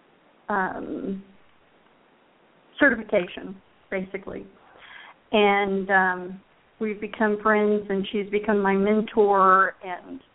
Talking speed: 80 wpm